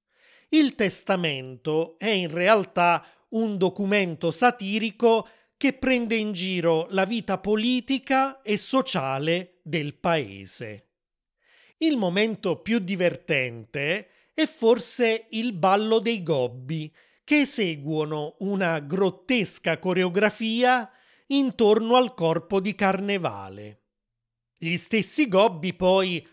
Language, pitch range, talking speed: Italian, 160-220 Hz, 100 wpm